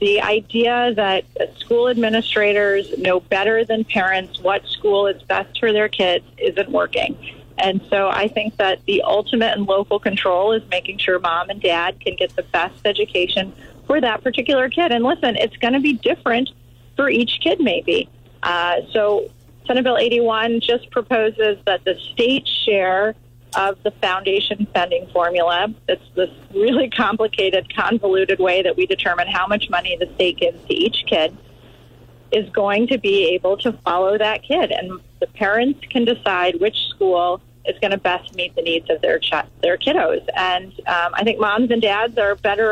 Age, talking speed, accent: 30-49, 175 wpm, American